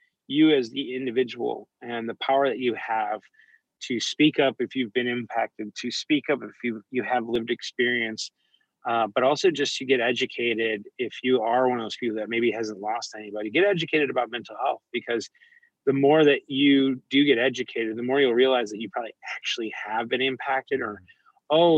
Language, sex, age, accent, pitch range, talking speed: English, male, 20-39, American, 120-145 Hz, 195 wpm